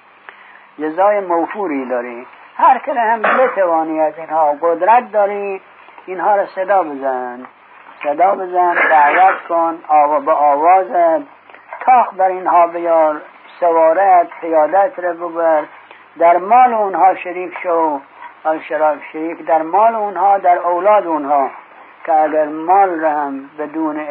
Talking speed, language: 120 wpm, English